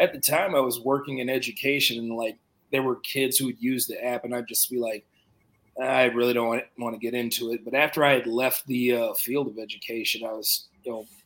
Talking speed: 240 wpm